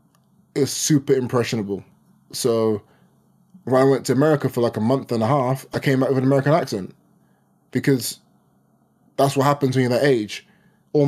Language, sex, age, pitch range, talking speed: English, male, 20-39, 115-150 Hz, 175 wpm